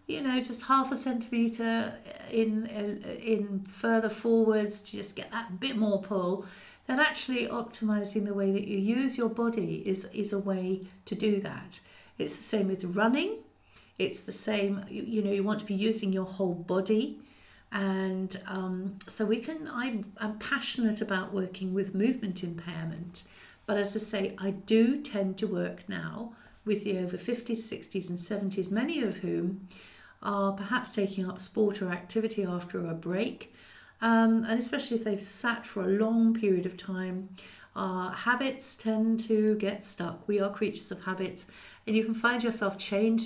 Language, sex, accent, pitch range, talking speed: English, female, British, 195-225 Hz, 175 wpm